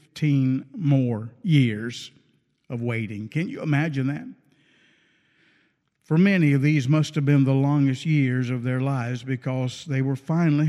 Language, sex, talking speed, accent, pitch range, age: English, male, 140 wpm, American, 130-150 Hz, 50-69